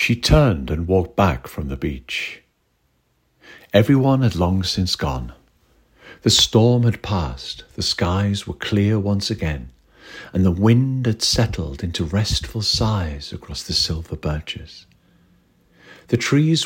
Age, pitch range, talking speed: 50-69, 90-115 Hz, 135 wpm